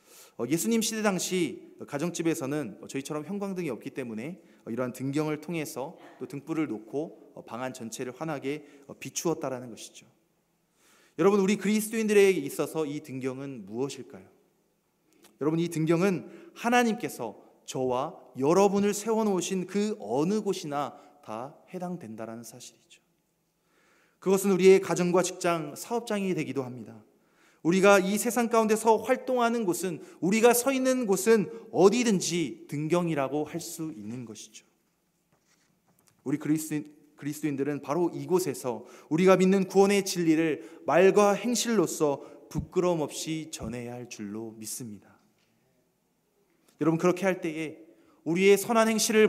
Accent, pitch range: native, 145-205 Hz